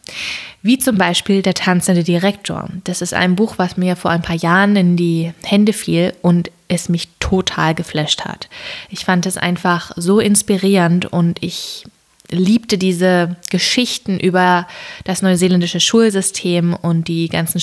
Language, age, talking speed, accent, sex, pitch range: German, 20-39, 150 wpm, German, female, 175-200 Hz